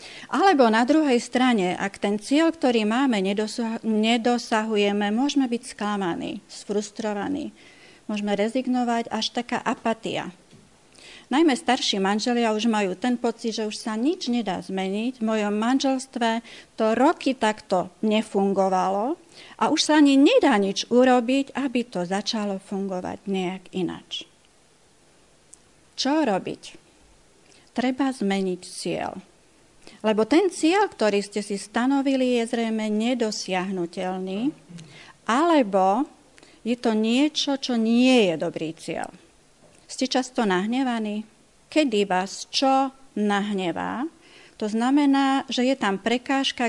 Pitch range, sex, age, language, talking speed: 200-265 Hz, female, 40-59, Slovak, 115 wpm